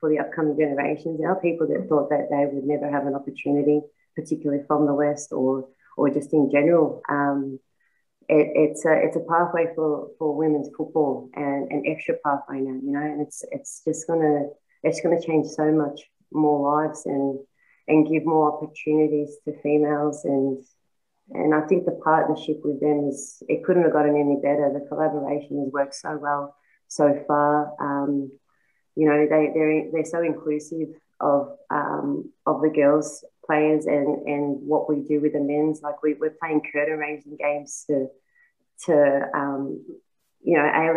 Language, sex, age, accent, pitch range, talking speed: English, female, 30-49, Australian, 145-155 Hz, 175 wpm